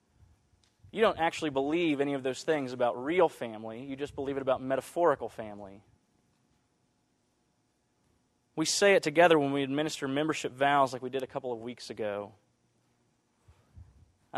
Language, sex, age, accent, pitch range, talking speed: English, male, 30-49, American, 125-160 Hz, 150 wpm